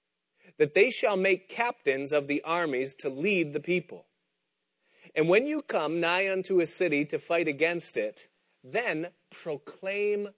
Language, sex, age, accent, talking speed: English, male, 30-49, American, 150 wpm